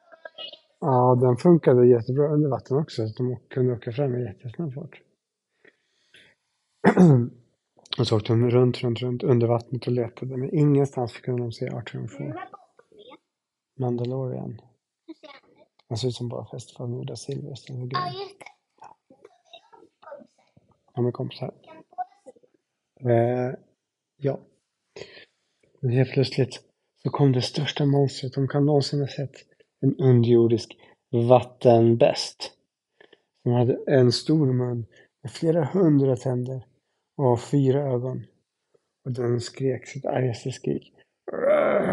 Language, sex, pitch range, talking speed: Swedish, male, 125-160 Hz, 125 wpm